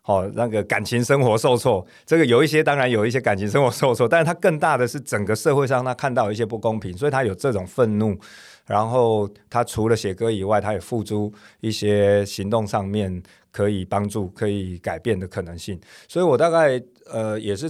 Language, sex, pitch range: Chinese, male, 100-120 Hz